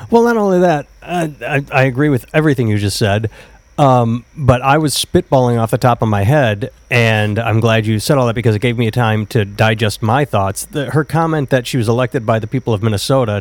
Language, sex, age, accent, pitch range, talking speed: English, male, 30-49, American, 110-140 Hz, 230 wpm